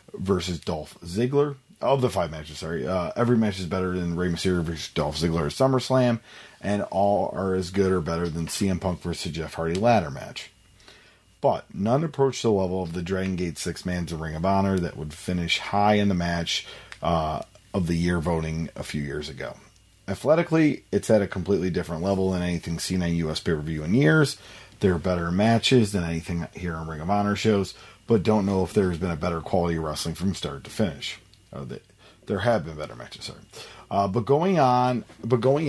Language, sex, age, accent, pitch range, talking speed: English, male, 40-59, American, 85-110 Hz, 205 wpm